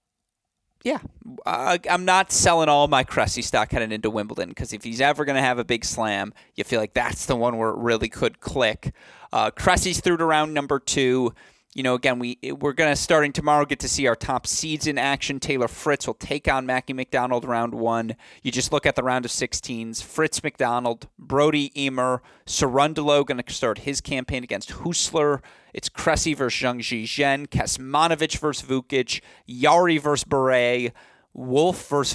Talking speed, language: 185 wpm, English